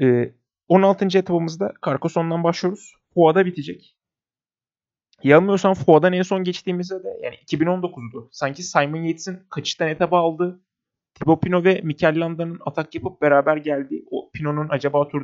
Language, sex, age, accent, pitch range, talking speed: Turkish, male, 30-49, native, 135-170 Hz, 130 wpm